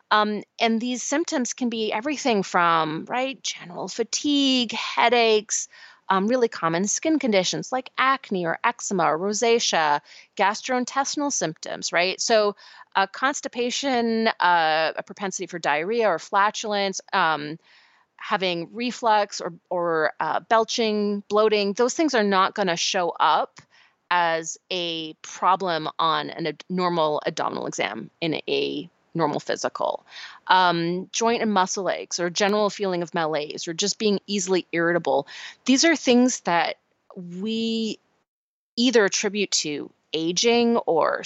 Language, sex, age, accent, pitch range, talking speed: English, female, 30-49, American, 175-235 Hz, 130 wpm